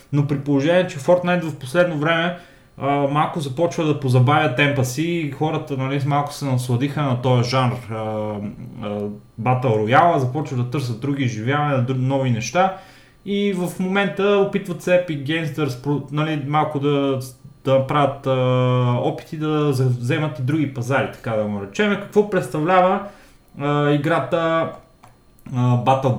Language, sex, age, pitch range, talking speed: Bulgarian, male, 20-39, 125-155 Hz, 145 wpm